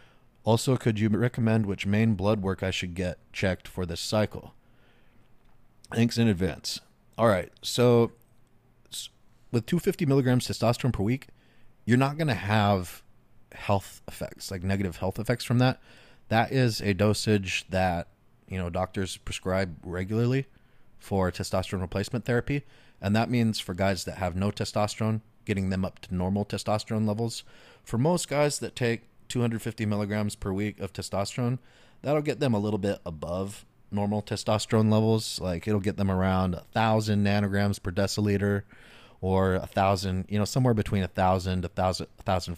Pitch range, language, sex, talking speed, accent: 95-115 Hz, English, male, 160 wpm, American